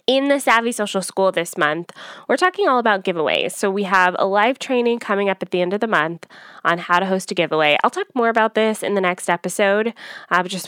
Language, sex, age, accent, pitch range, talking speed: English, female, 20-39, American, 185-235 Hz, 240 wpm